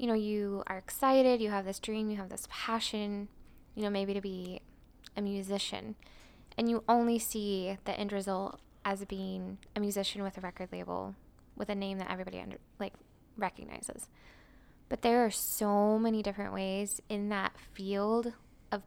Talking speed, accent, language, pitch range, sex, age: 170 wpm, American, English, 195-220 Hz, female, 10-29